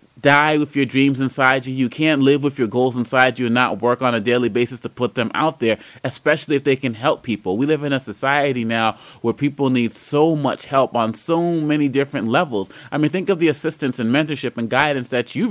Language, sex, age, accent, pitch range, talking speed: English, male, 30-49, American, 135-170 Hz, 235 wpm